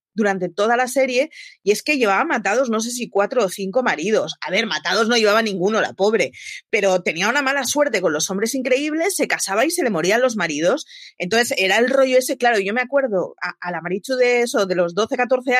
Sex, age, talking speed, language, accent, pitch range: female, 30-49, 225 wpm, Spanish, Spanish, 190-265 Hz